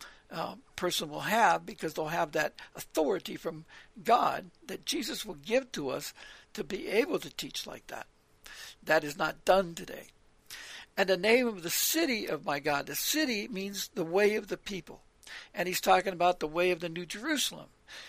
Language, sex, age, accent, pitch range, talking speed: English, male, 60-79, American, 175-250 Hz, 185 wpm